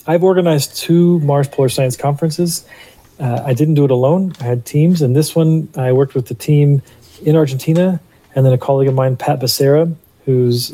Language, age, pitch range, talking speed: English, 40-59, 120-155 Hz, 195 wpm